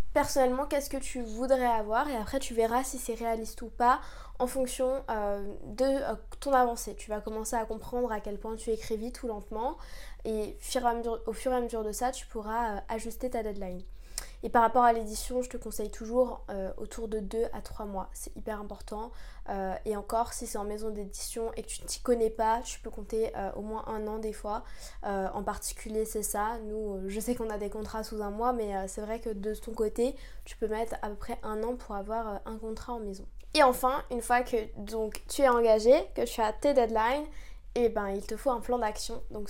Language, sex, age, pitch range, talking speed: French, female, 20-39, 220-250 Hz, 230 wpm